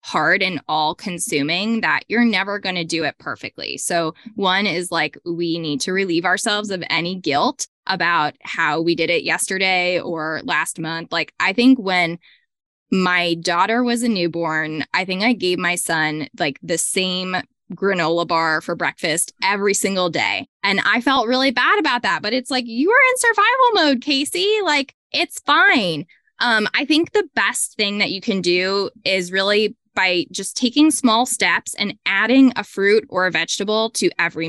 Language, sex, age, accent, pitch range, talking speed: English, female, 10-29, American, 175-250 Hz, 180 wpm